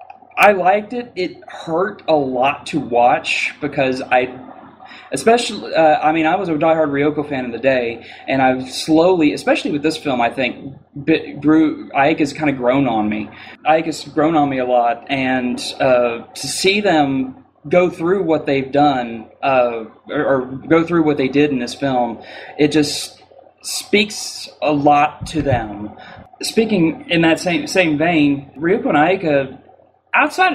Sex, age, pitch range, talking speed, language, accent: male, 20-39, 140-220 Hz, 165 wpm, English, American